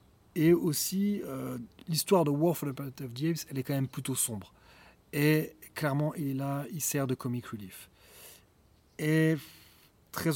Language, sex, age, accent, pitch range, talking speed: French, male, 30-49, French, 130-175 Hz, 175 wpm